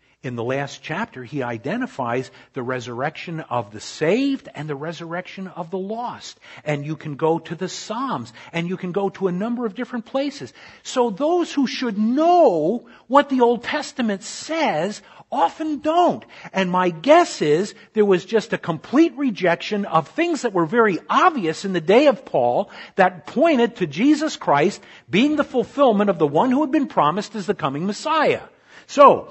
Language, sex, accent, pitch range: English, male, American, 170-255 Hz